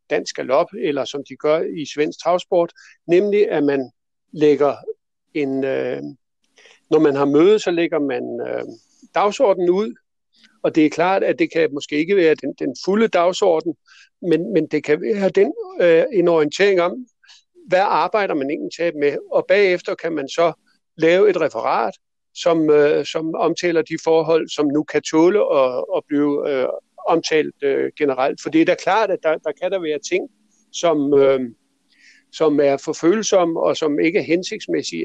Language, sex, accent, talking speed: Danish, male, native, 175 wpm